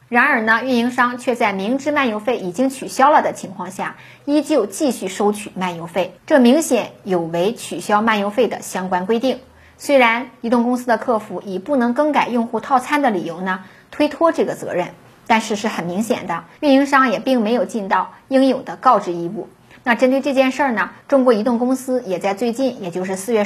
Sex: female